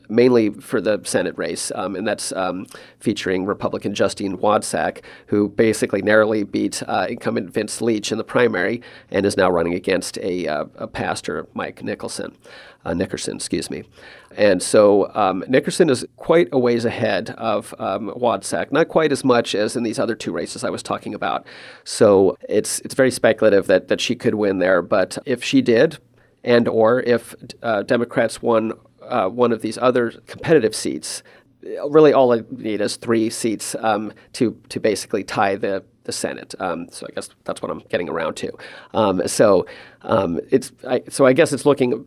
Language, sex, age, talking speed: English, male, 40-59, 185 wpm